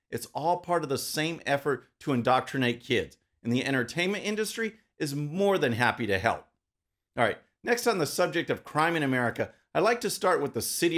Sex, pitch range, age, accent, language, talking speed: male, 140-200 Hz, 40-59, American, English, 200 wpm